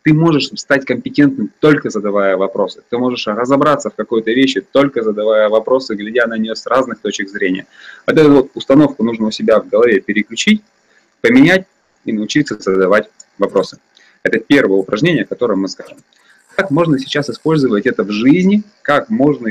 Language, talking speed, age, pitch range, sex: Russian, 165 wpm, 30-49, 105-155 Hz, male